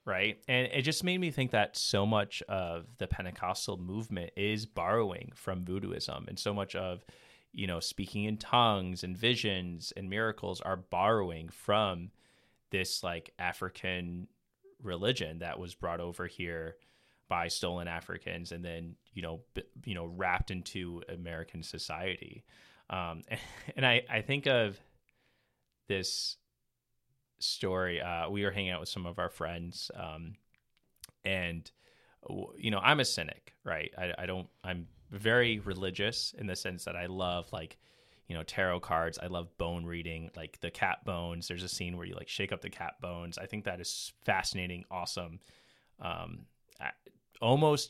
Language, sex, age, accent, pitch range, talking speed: English, male, 30-49, American, 85-105 Hz, 160 wpm